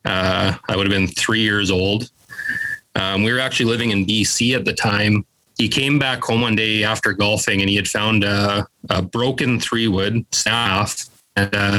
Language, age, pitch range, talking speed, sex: English, 30-49, 100-115 Hz, 190 wpm, male